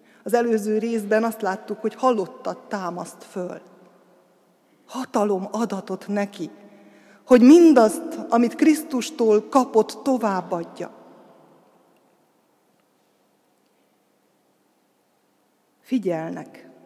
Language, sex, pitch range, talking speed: Hungarian, female, 200-255 Hz, 70 wpm